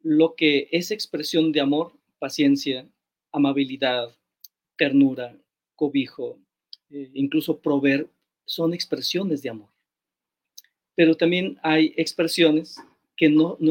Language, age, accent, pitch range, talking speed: Spanish, 40-59, Mexican, 145-170 Hz, 105 wpm